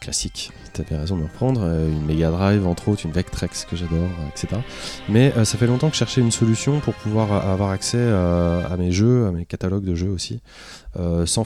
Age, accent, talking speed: 20-39, French, 225 wpm